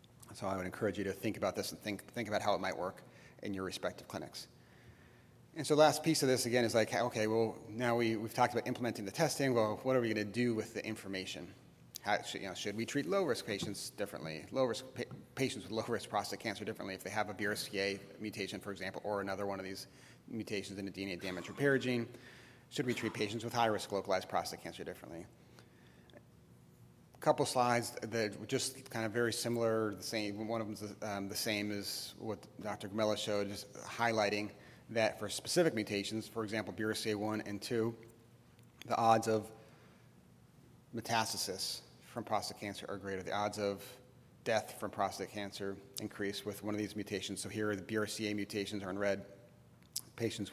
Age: 30-49